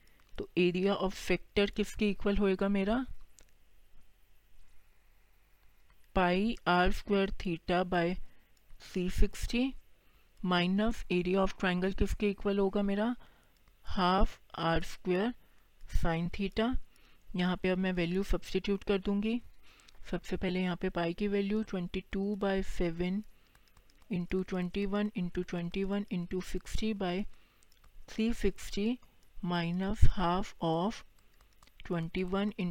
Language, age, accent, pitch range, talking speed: Hindi, 50-69, native, 175-200 Hz, 105 wpm